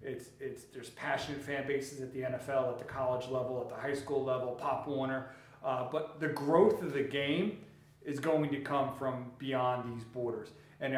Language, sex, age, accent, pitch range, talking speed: English, male, 40-59, American, 130-150 Hz, 195 wpm